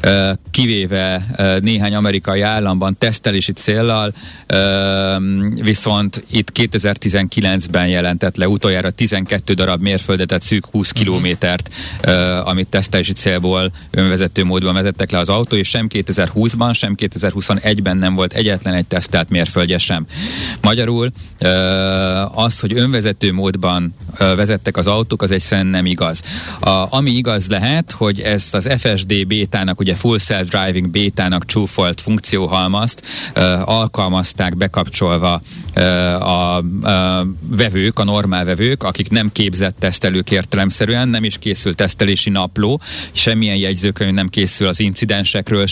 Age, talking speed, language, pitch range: 40-59, 115 wpm, Hungarian, 95-110 Hz